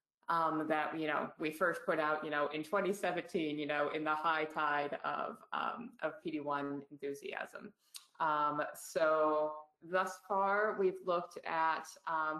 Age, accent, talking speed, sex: 20-39, American, 150 wpm, female